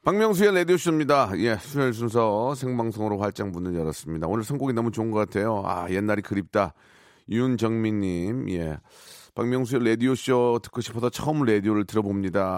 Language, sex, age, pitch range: Korean, male, 40-59, 105-140 Hz